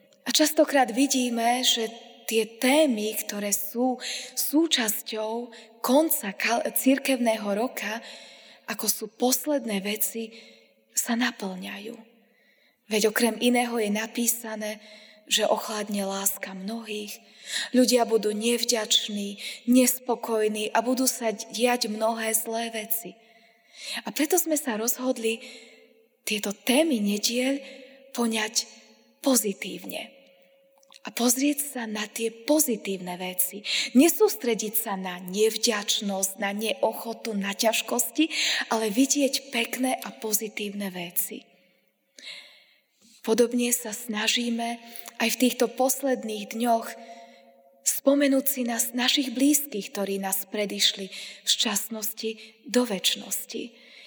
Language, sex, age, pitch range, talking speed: Slovak, female, 20-39, 215-250 Hz, 100 wpm